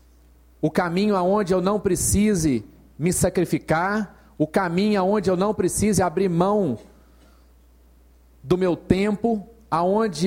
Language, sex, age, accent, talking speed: Portuguese, male, 40-59, Brazilian, 115 wpm